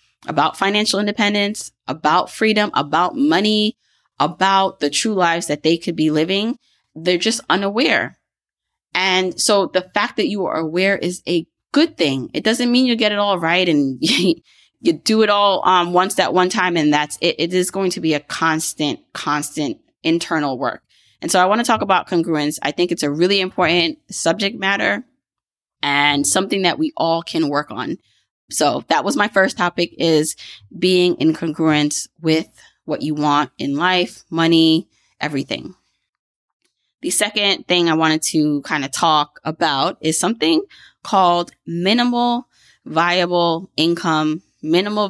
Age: 20-39